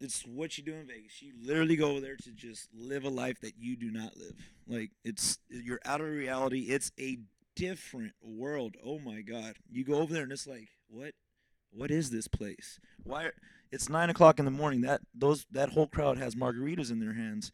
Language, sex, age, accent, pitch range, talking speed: English, male, 30-49, American, 115-150 Hz, 215 wpm